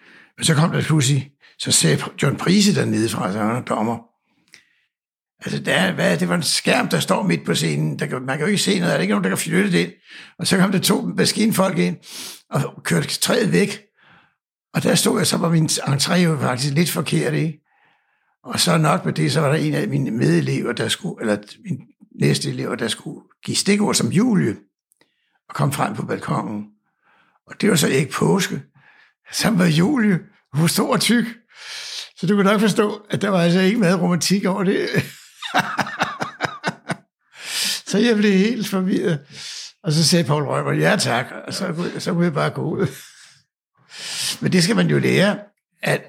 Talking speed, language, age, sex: 200 wpm, Danish, 60-79, male